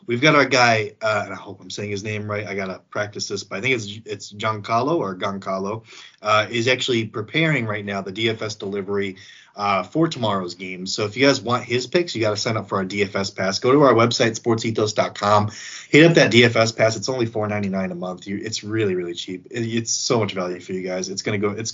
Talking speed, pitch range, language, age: 230 wpm, 95-120 Hz, English, 20-39